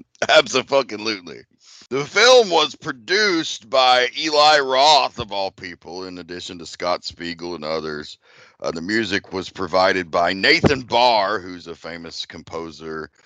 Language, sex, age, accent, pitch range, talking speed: English, male, 40-59, American, 85-125 Hz, 135 wpm